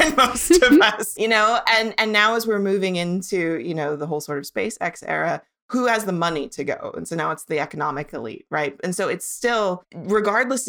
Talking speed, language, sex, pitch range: 220 wpm, English, female, 155-195 Hz